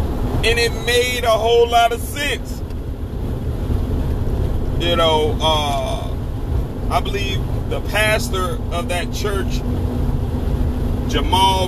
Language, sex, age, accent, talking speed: English, male, 40-59, American, 100 wpm